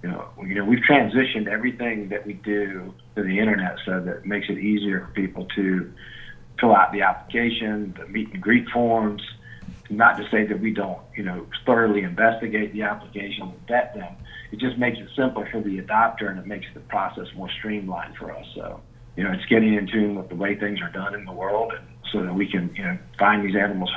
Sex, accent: male, American